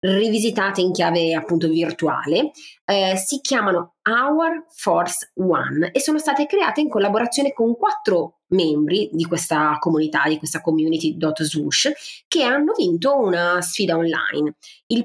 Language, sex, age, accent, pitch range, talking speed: Italian, female, 30-49, native, 165-255 Hz, 130 wpm